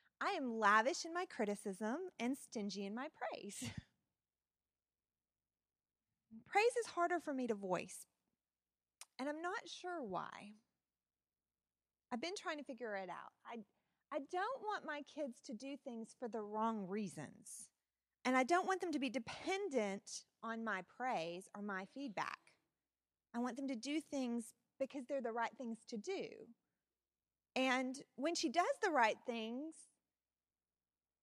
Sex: female